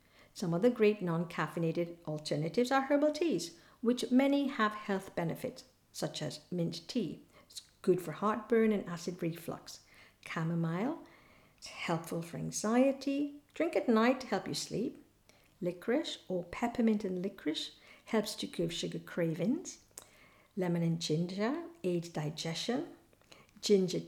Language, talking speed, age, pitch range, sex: English, 130 wpm, 50-69, 170-240 Hz, female